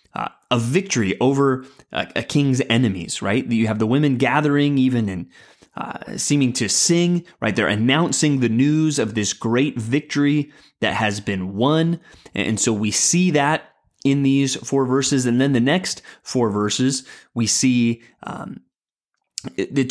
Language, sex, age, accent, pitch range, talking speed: English, male, 20-39, American, 115-140 Hz, 155 wpm